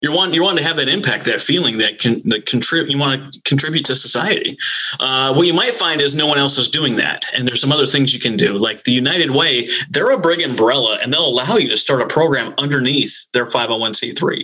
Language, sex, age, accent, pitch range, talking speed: English, male, 30-49, American, 120-140 Hz, 235 wpm